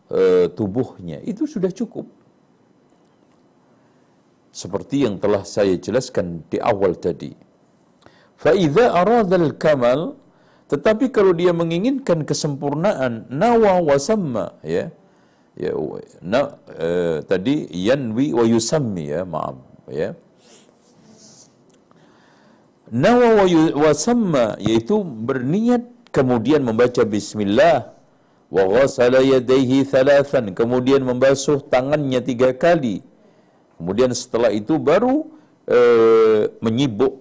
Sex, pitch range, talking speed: male, 130-215 Hz, 85 wpm